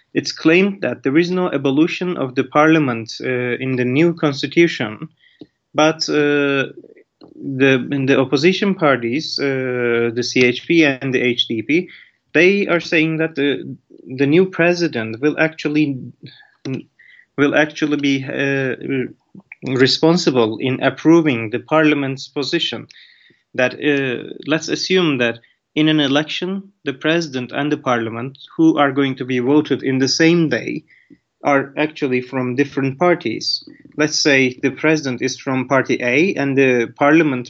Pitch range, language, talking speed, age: 130-155 Hz, English, 140 wpm, 30-49